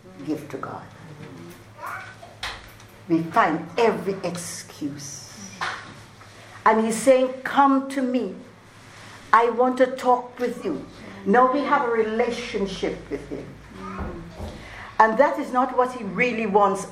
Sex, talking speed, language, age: female, 120 wpm, English, 60-79